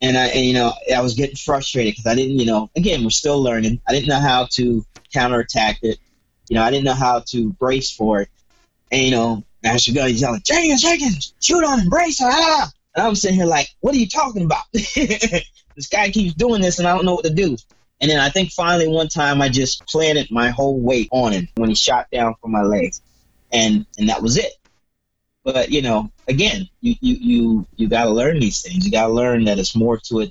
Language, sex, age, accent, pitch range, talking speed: English, male, 20-39, American, 115-175 Hz, 235 wpm